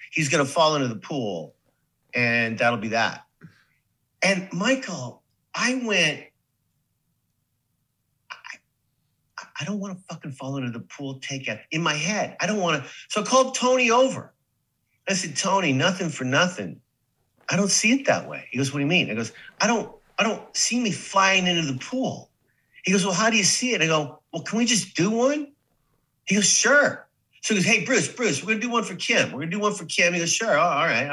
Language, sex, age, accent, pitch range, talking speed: English, male, 50-69, American, 140-220 Hz, 220 wpm